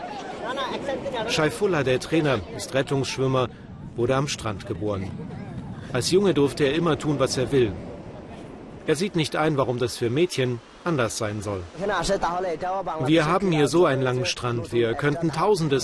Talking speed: 150 wpm